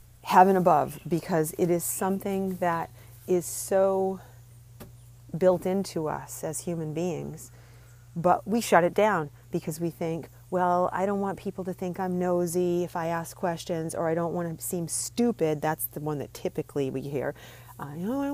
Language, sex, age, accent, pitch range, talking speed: English, female, 40-59, American, 145-180 Hz, 175 wpm